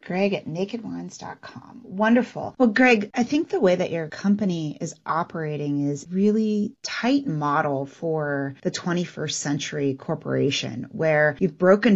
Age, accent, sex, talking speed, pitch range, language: 30-49, American, female, 135 wpm, 140-175 Hz, English